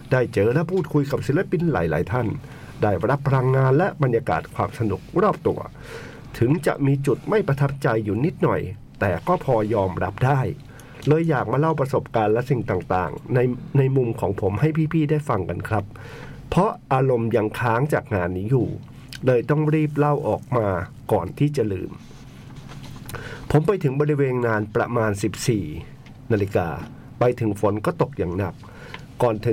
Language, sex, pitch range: Thai, male, 115-145 Hz